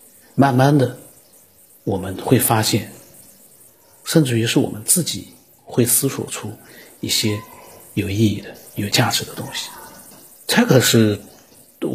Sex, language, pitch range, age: male, Chinese, 110-155 Hz, 50-69